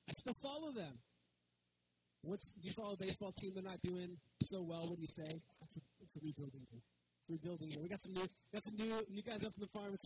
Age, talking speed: 30-49, 235 wpm